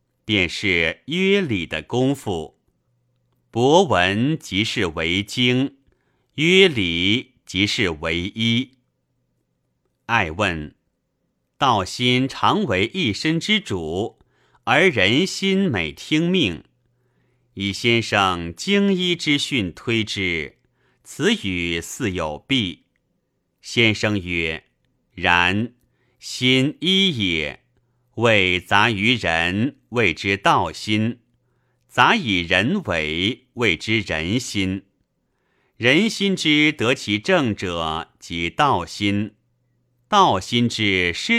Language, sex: Chinese, male